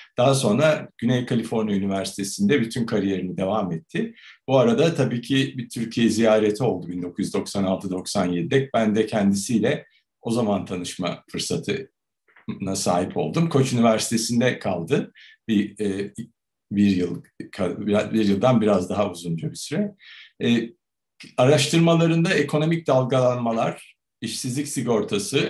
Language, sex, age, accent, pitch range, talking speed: Turkish, male, 60-79, native, 100-135 Hz, 105 wpm